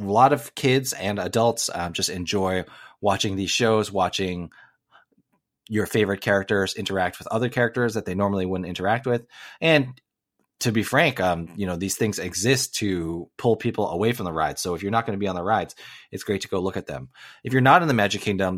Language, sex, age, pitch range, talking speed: English, male, 30-49, 95-115 Hz, 215 wpm